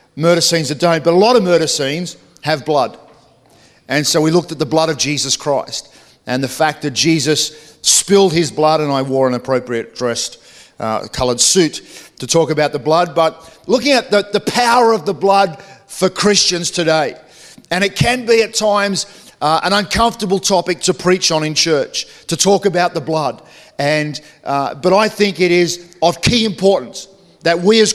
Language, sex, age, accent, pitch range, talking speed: English, male, 50-69, Australian, 155-190 Hz, 190 wpm